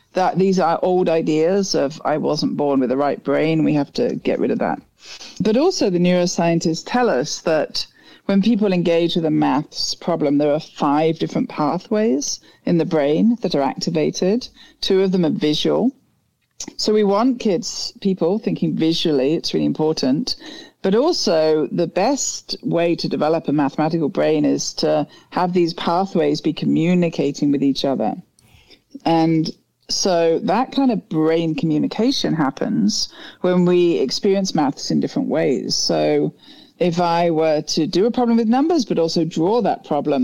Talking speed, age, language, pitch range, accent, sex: 165 wpm, 40-59, English, 155-200 Hz, British, female